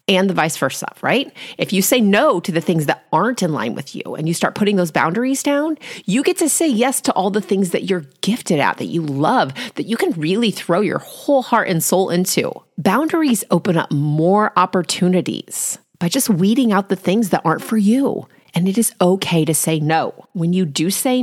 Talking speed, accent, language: 220 wpm, American, English